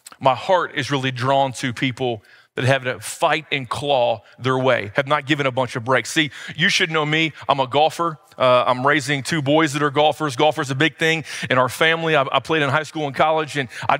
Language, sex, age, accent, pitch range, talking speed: English, male, 30-49, American, 140-175 Hz, 240 wpm